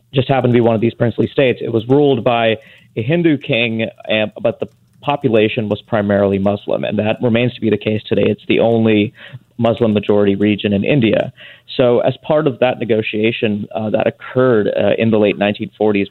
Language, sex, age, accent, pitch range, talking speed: English, male, 30-49, American, 105-125 Hz, 195 wpm